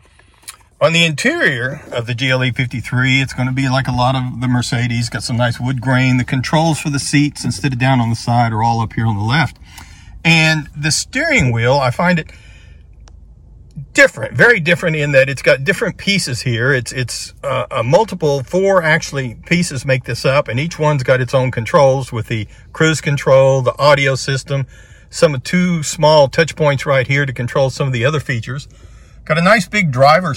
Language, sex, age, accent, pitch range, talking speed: English, male, 50-69, American, 120-150 Hz, 200 wpm